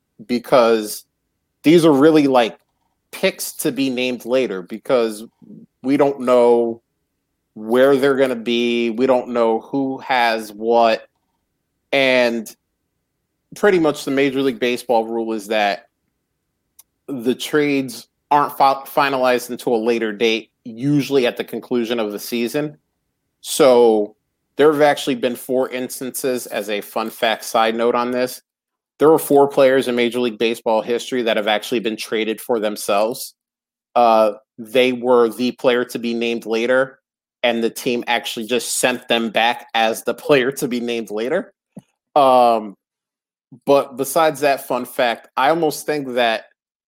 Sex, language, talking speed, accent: male, English, 145 wpm, American